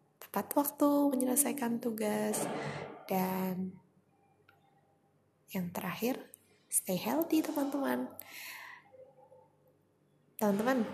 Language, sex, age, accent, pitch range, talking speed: Indonesian, female, 20-39, native, 185-235 Hz, 55 wpm